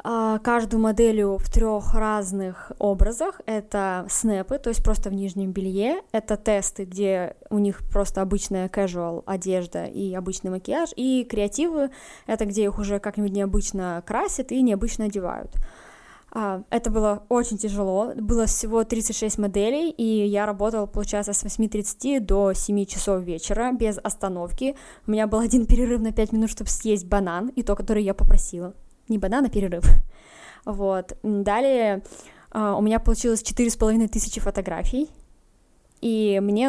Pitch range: 200-230 Hz